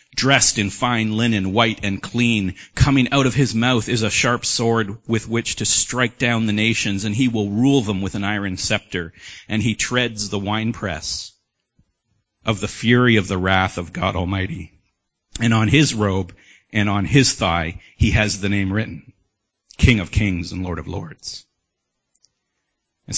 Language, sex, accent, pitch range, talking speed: English, male, American, 95-120 Hz, 175 wpm